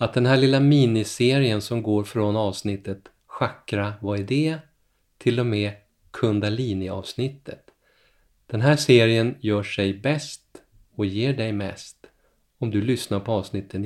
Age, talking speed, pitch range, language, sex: 30-49, 140 wpm, 100-125 Hz, Swedish, male